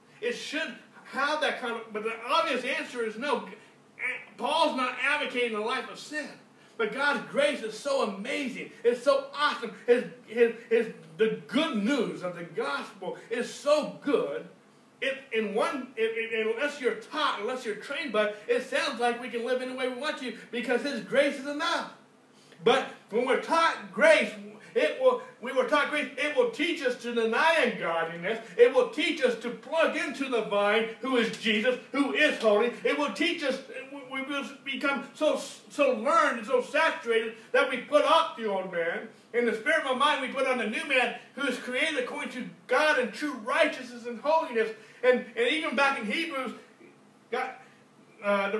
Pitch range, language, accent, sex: 230-290 Hz, English, American, male